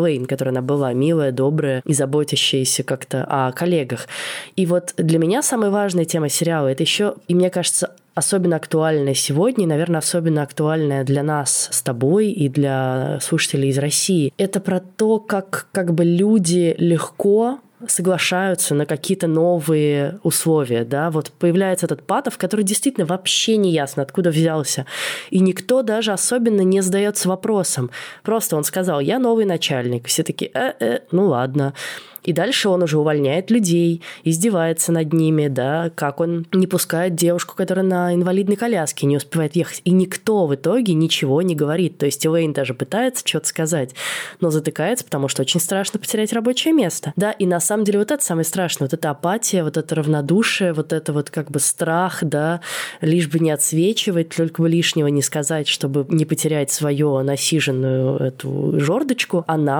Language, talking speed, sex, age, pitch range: Russian, 165 wpm, female, 20-39, 150-190 Hz